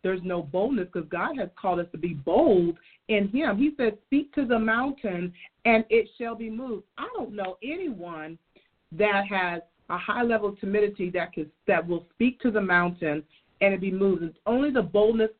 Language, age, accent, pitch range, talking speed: English, 40-59, American, 180-220 Hz, 190 wpm